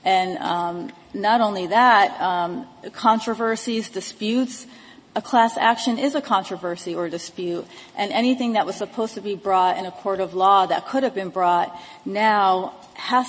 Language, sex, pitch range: English, female, 180-220 Hz